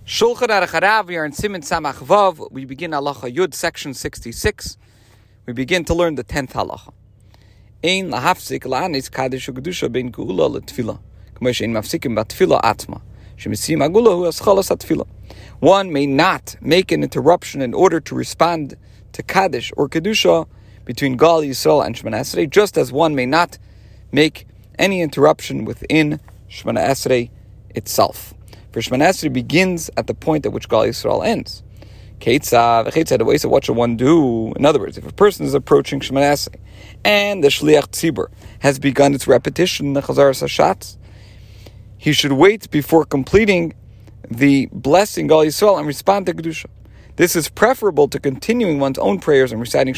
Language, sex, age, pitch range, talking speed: English, male, 40-59, 105-160 Hz, 160 wpm